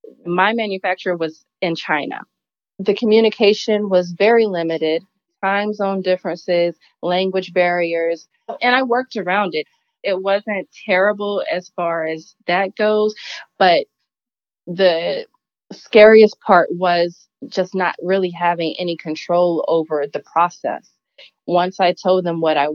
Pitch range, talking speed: 170-205 Hz, 125 wpm